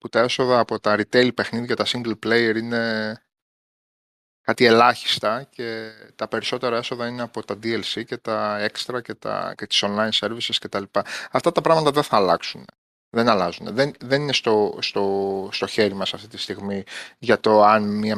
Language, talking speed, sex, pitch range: Greek, 180 wpm, male, 105-170 Hz